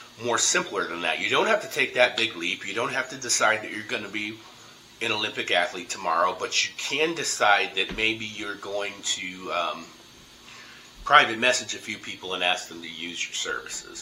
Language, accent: English, American